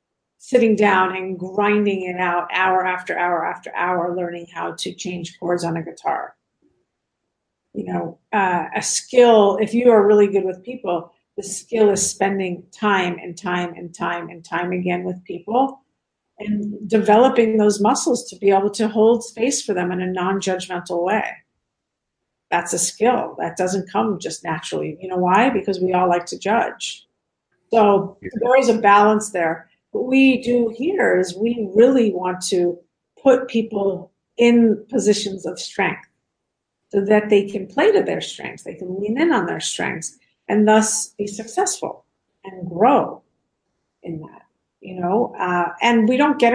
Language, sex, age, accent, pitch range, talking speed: English, female, 50-69, American, 180-220 Hz, 165 wpm